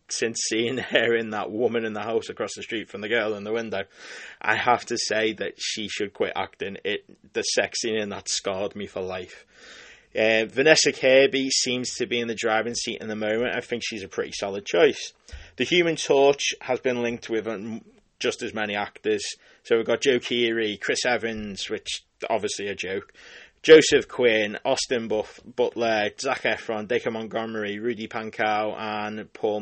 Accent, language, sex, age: British, English, male, 20-39